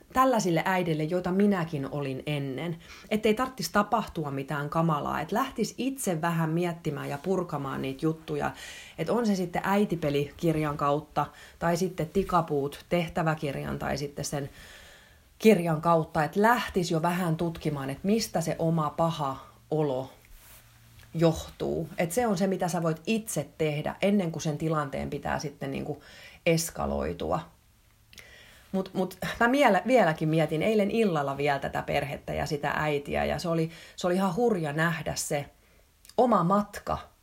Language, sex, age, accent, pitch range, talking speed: Finnish, female, 30-49, native, 145-195 Hz, 140 wpm